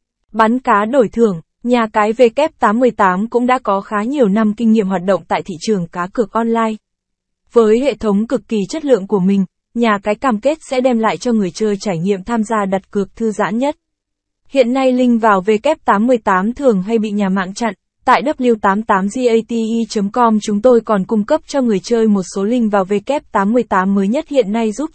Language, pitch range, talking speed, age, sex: Vietnamese, 205-255 Hz, 220 wpm, 20-39, female